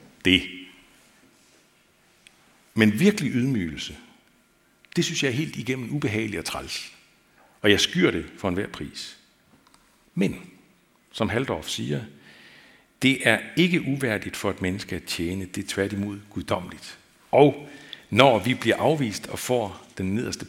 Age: 60-79